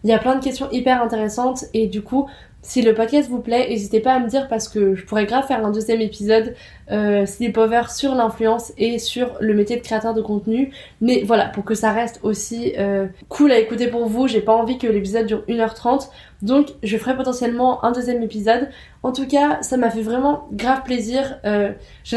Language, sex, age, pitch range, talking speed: French, female, 20-39, 225-260 Hz, 215 wpm